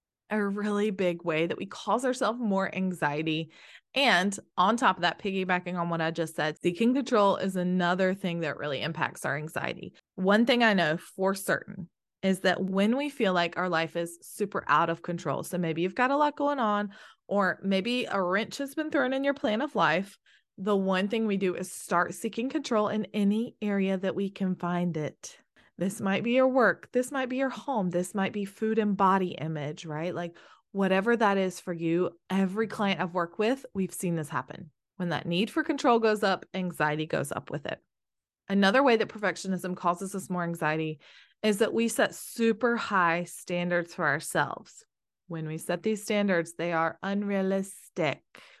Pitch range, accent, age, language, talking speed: 175-215 Hz, American, 20-39, English, 195 wpm